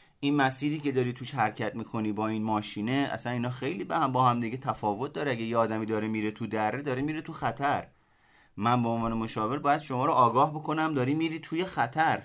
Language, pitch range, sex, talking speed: Persian, 100-145 Hz, male, 215 wpm